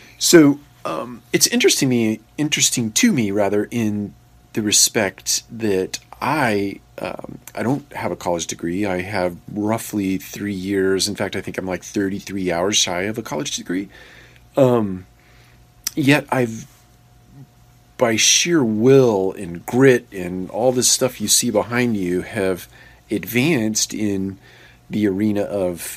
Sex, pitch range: male, 95-120 Hz